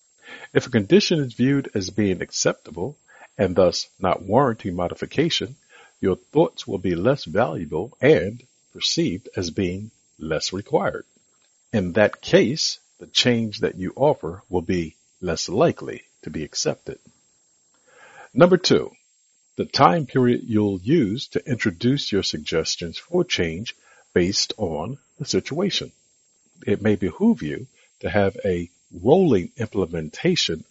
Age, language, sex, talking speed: 50-69, English, male, 130 wpm